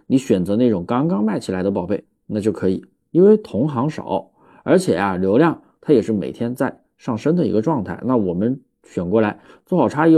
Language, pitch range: Chinese, 100-160 Hz